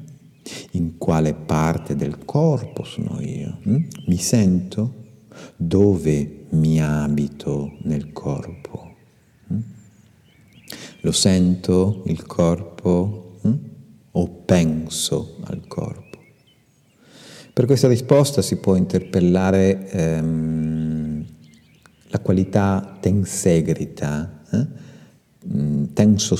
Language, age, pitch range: Italian, 50-69, 80-100 Hz